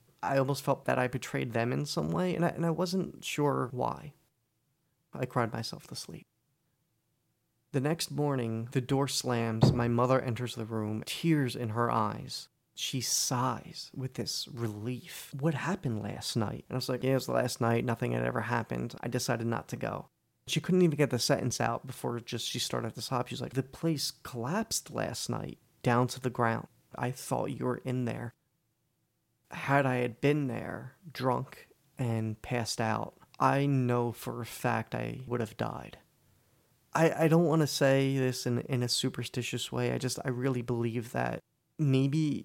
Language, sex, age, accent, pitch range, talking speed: English, male, 30-49, American, 115-135 Hz, 185 wpm